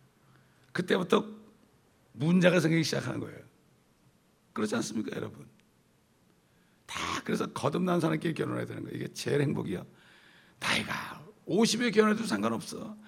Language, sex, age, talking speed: English, male, 60-79, 100 wpm